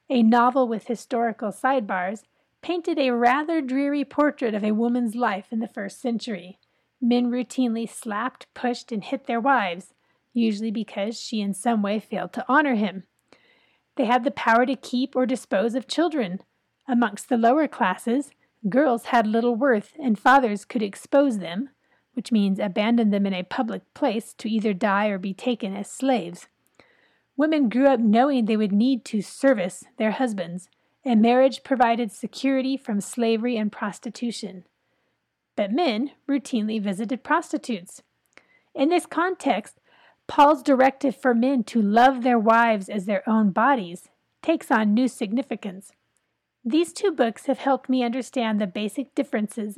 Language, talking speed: English, 155 wpm